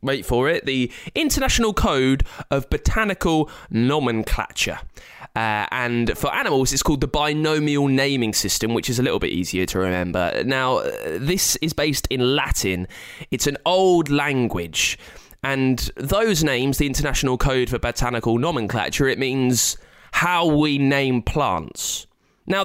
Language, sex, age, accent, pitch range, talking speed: English, male, 20-39, British, 115-175 Hz, 140 wpm